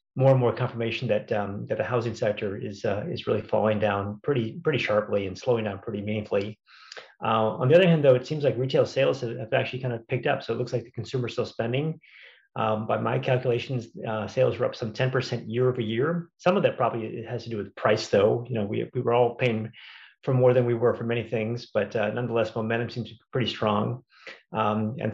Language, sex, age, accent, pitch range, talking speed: English, male, 30-49, American, 110-125 Hz, 230 wpm